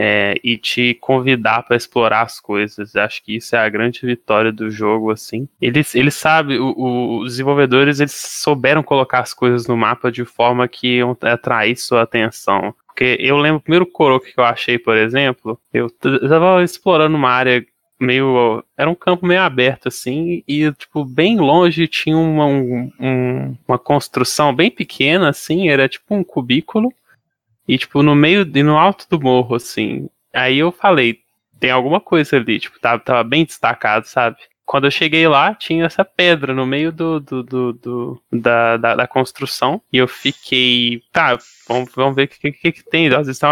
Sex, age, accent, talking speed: male, 10-29, Brazilian, 185 wpm